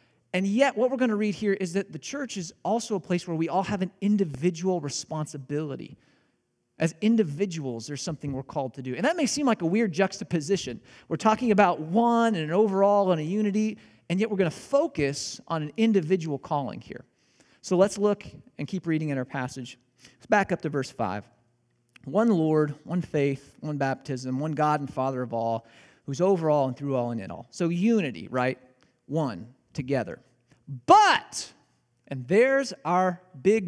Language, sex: English, male